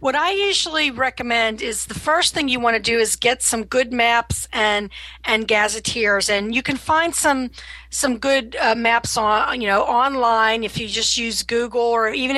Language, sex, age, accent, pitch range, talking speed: English, female, 40-59, American, 220-255 Hz, 195 wpm